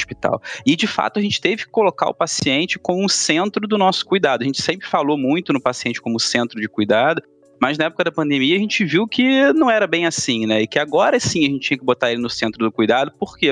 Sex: male